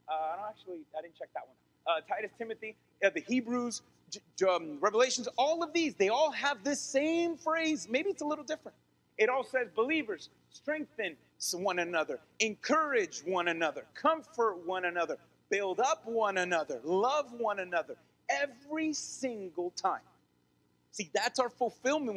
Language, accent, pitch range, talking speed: English, American, 205-285 Hz, 160 wpm